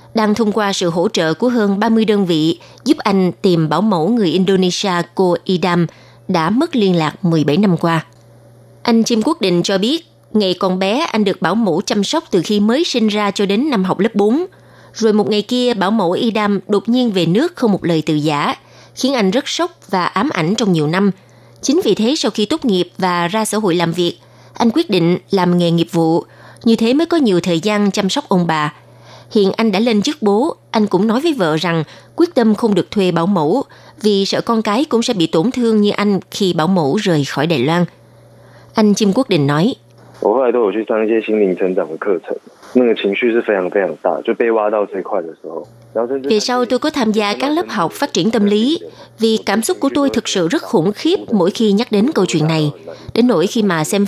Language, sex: Vietnamese, female